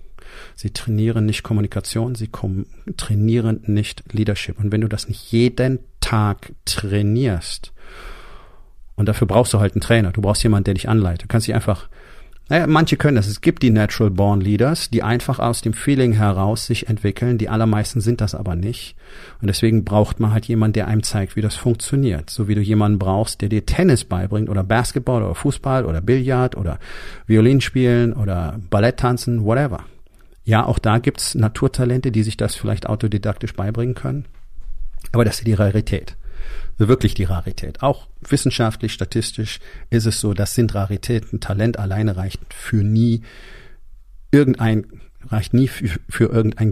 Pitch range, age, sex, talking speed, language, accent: 100-120 Hz, 40-59, male, 170 wpm, German, German